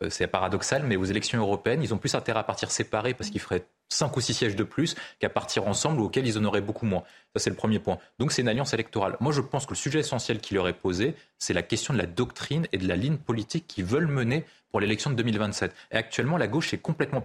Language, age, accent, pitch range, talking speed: French, 30-49, French, 95-135 Hz, 270 wpm